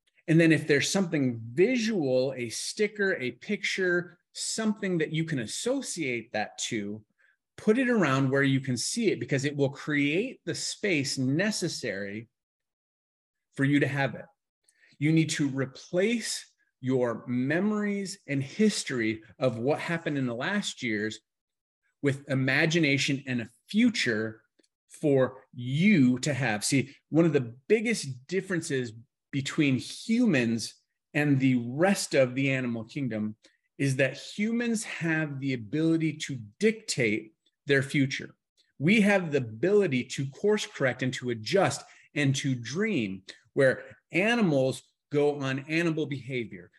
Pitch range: 125-165 Hz